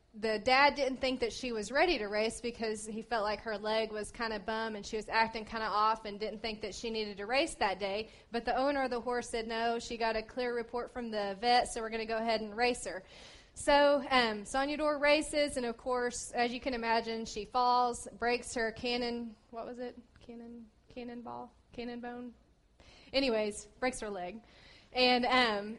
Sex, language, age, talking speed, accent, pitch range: female, English, 20-39, 215 wpm, American, 215-245 Hz